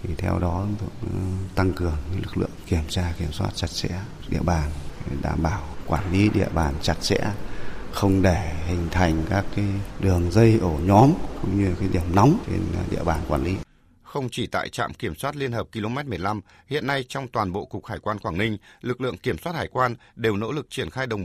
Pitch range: 90-120 Hz